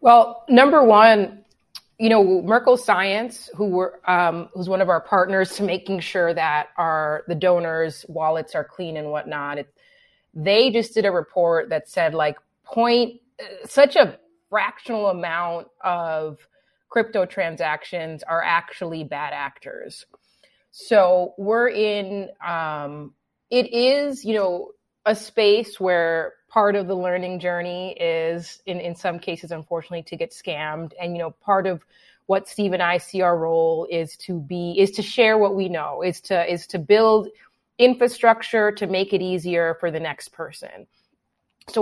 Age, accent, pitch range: 30-49, American, 170-215 Hz